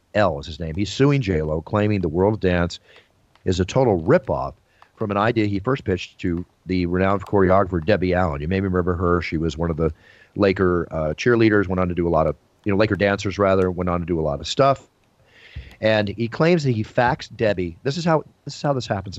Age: 40-59